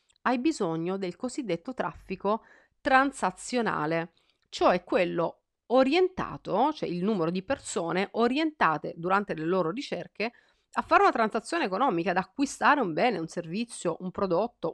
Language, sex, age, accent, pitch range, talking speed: Italian, female, 40-59, native, 180-250 Hz, 130 wpm